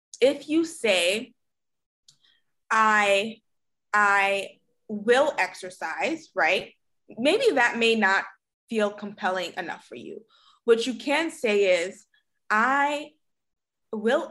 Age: 20-39